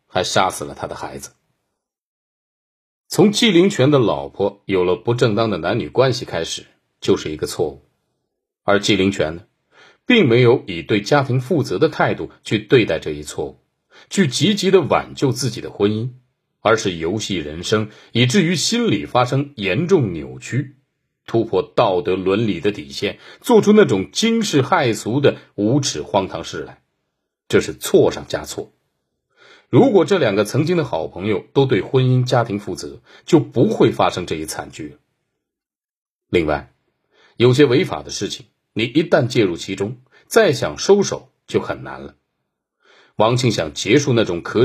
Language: Chinese